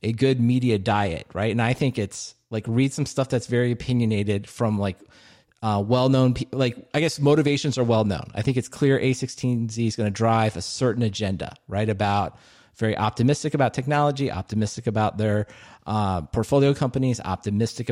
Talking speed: 180 wpm